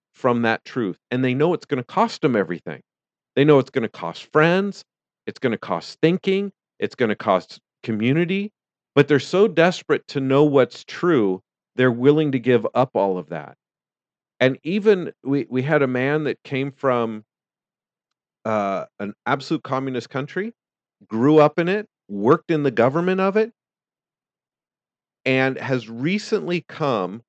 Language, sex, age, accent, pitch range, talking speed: English, male, 40-59, American, 120-155 Hz, 165 wpm